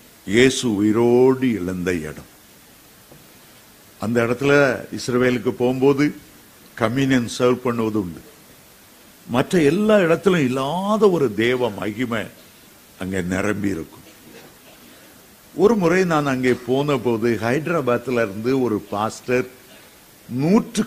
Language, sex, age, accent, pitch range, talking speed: Tamil, male, 50-69, native, 110-145 Hz, 85 wpm